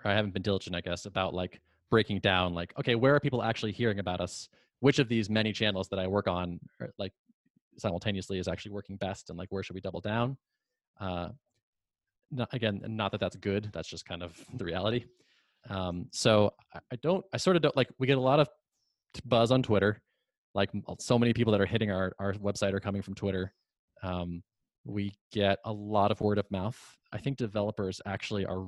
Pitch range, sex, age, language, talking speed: 95-115 Hz, male, 20-39, English, 205 wpm